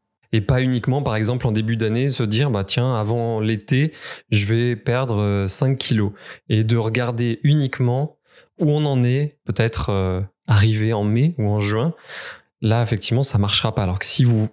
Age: 20-39